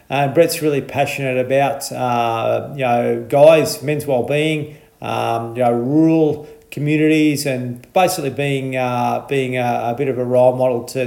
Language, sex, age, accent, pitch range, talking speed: English, male, 40-59, Australian, 120-140 Hz, 155 wpm